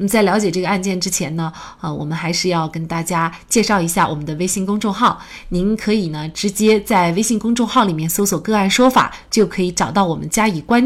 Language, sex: Chinese, female